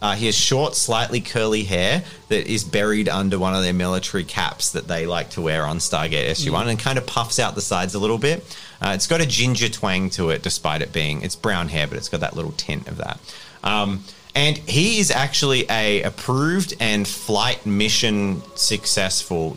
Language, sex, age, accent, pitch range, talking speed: English, male, 30-49, Australian, 85-110 Hz, 205 wpm